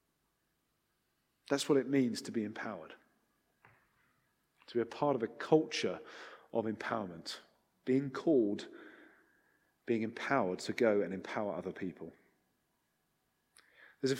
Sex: male